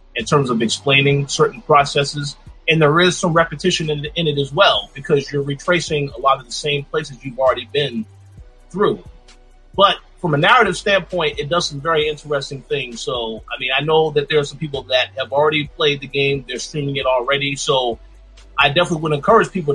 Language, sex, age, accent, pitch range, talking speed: English, male, 30-49, American, 130-155 Hz, 200 wpm